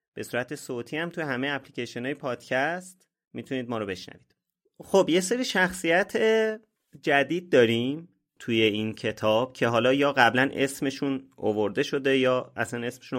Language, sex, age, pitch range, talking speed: Persian, male, 30-49, 115-155 Hz, 145 wpm